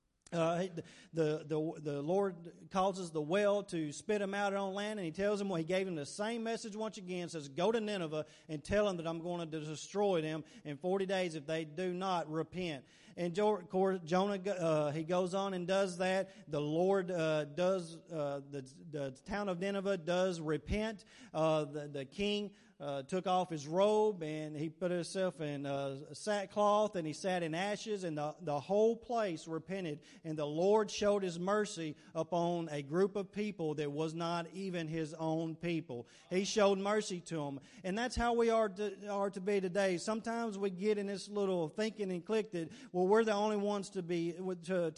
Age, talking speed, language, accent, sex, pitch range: 40-59, 200 wpm, English, American, male, 160-205 Hz